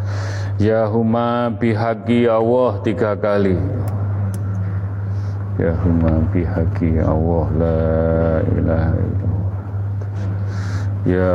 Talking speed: 75 wpm